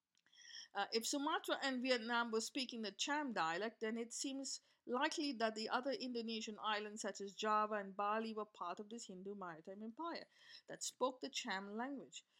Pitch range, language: 200-270 Hz, English